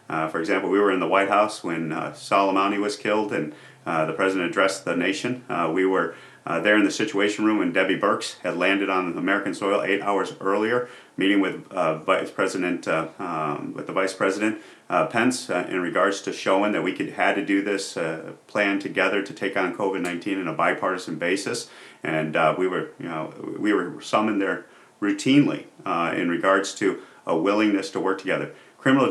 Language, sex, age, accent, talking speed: English, male, 40-59, American, 205 wpm